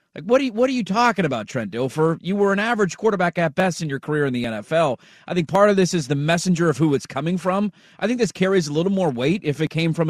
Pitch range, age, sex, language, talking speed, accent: 155-205 Hz, 30-49, male, English, 280 wpm, American